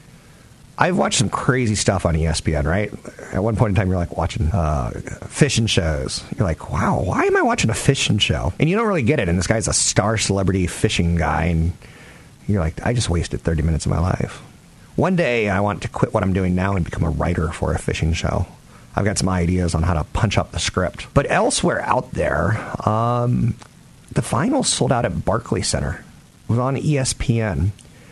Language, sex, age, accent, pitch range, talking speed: English, male, 40-59, American, 90-120 Hz, 210 wpm